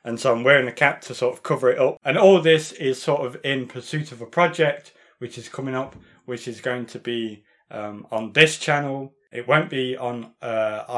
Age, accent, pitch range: 20-39, British, 120-140 Hz